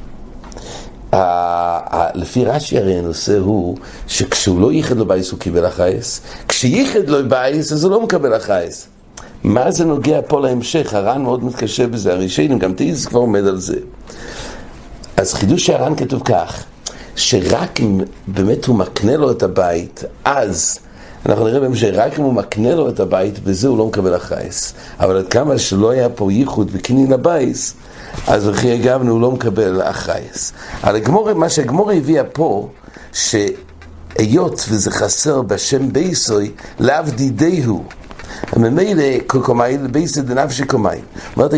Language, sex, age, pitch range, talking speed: English, male, 60-79, 105-145 Hz, 100 wpm